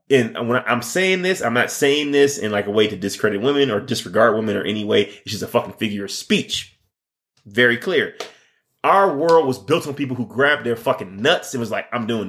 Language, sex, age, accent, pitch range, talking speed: English, male, 30-49, American, 115-185 Hz, 230 wpm